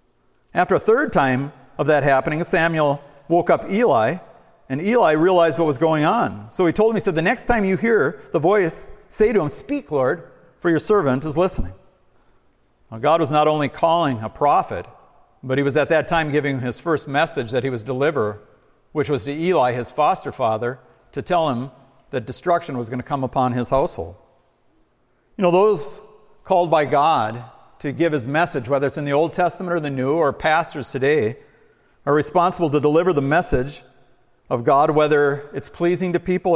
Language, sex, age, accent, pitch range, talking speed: English, male, 50-69, American, 140-185 Hz, 190 wpm